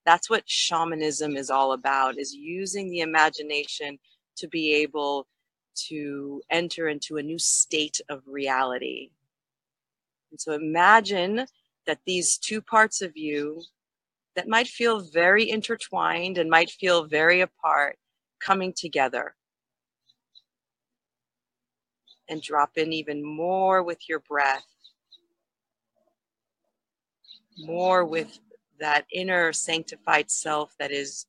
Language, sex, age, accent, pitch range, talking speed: English, female, 40-59, American, 150-190 Hz, 110 wpm